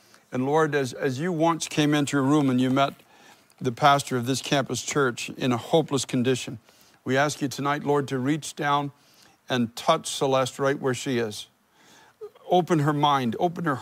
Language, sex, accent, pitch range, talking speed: English, male, American, 125-150 Hz, 185 wpm